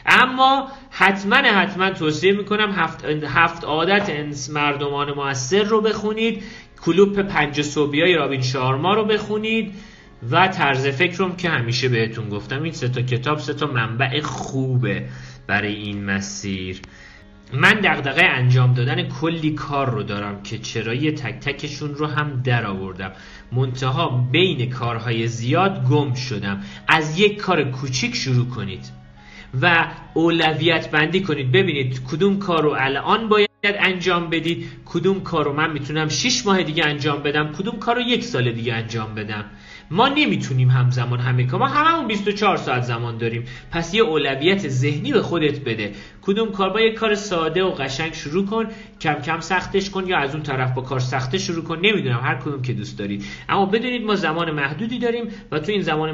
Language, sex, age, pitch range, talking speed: Persian, male, 40-59, 125-185 Hz, 165 wpm